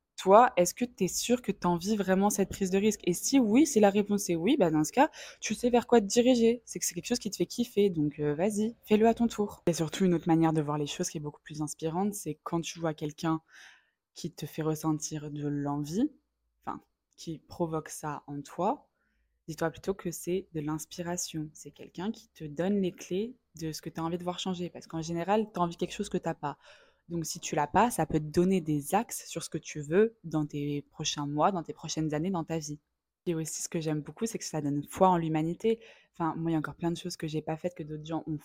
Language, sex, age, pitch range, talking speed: French, female, 20-39, 155-200 Hz, 270 wpm